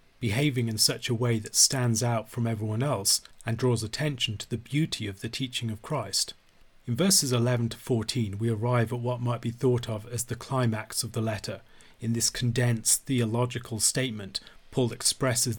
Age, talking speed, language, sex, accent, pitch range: 30-49, 185 wpm, English, male, British, 115-130 Hz